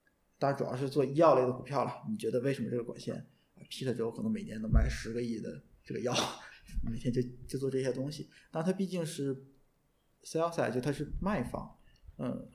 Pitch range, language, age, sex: 125-155 Hz, Chinese, 20-39, male